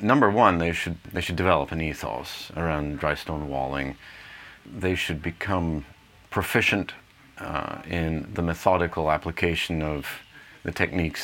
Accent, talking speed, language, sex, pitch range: American, 135 wpm, English, male, 75-85 Hz